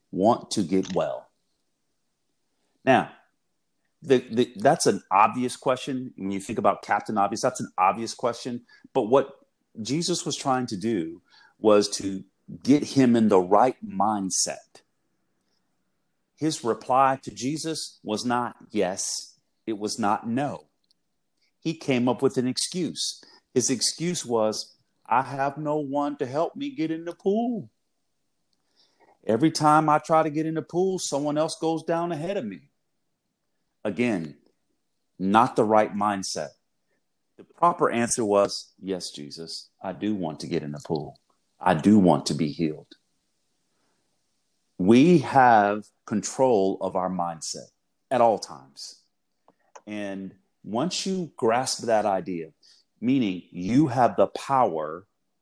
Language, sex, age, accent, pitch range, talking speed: English, male, 40-59, American, 100-155 Hz, 135 wpm